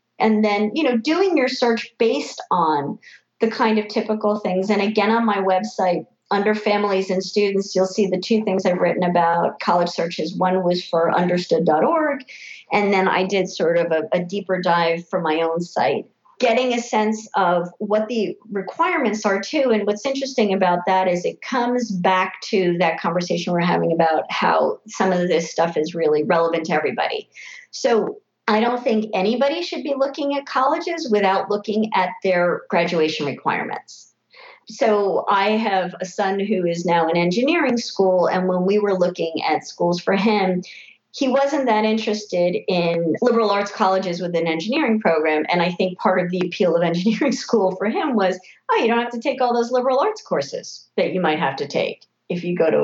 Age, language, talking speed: 40-59, English, 190 wpm